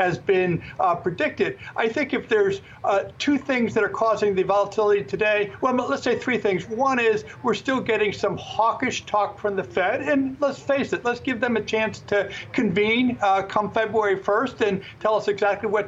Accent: American